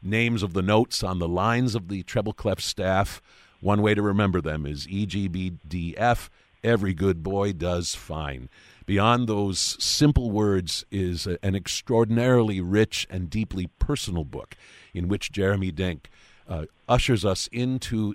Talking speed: 140 wpm